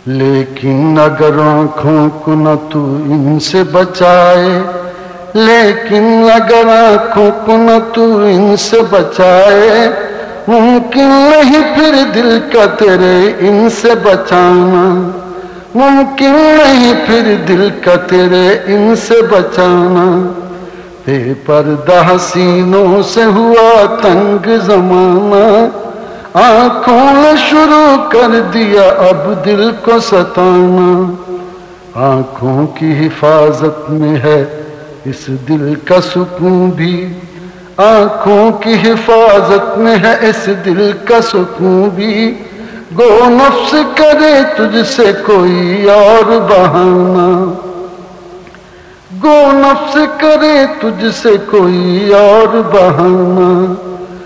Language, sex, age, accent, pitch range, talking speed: English, male, 60-79, Indian, 180-225 Hz, 75 wpm